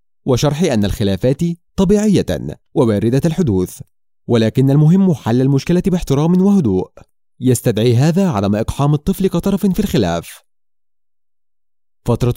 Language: Arabic